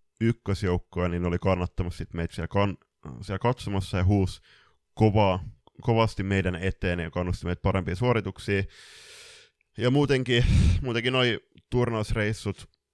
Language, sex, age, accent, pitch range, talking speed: Finnish, male, 20-39, native, 90-110 Hz, 115 wpm